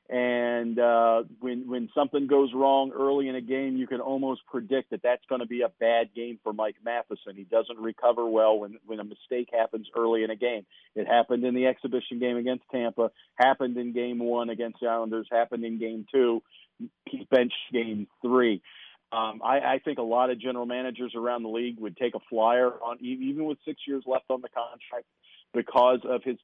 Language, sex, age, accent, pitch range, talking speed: English, male, 50-69, American, 115-135 Hz, 200 wpm